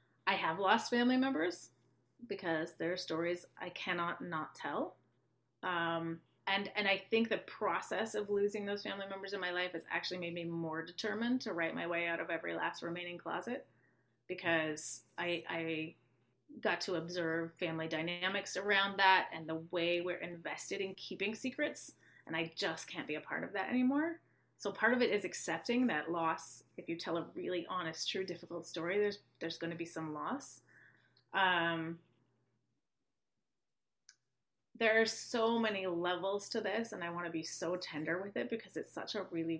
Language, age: English, 30-49